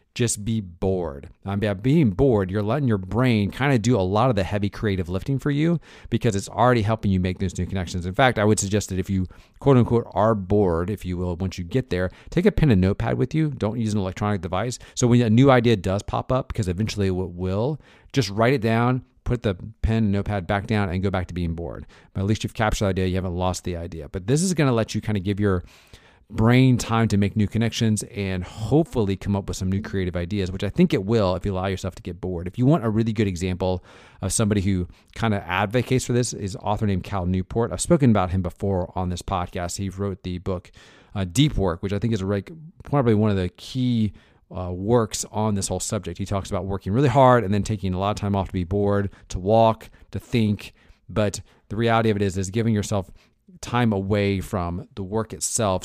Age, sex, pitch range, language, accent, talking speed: 40-59, male, 95-115 Hz, English, American, 245 wpm